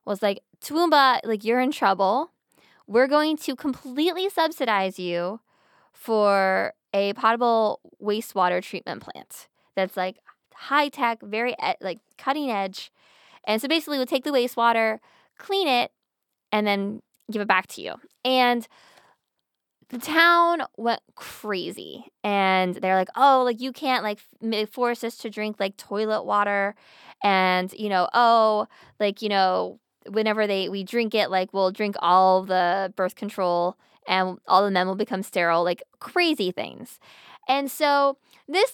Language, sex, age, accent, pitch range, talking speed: English, female, 10-29, American, 195-255 Hz, 145 wpm